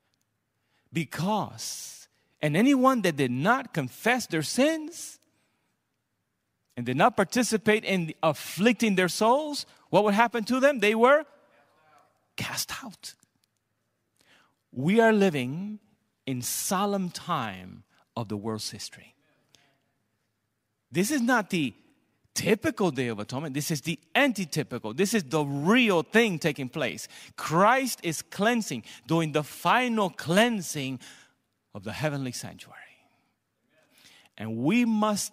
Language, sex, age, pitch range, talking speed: English, male, 40-59, 130-215 Hz, 115 wpm